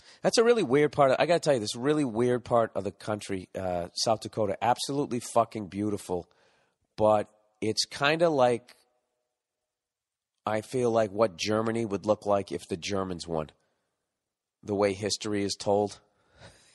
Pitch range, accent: 100-125 Hz, American